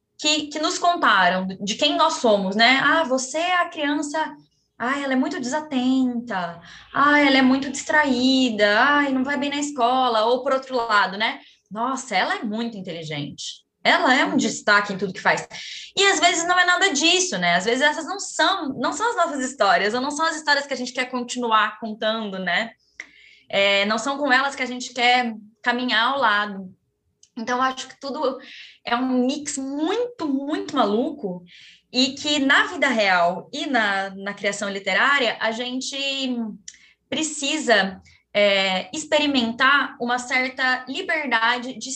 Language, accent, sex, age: Portuguese, Brazilian, female, 20-39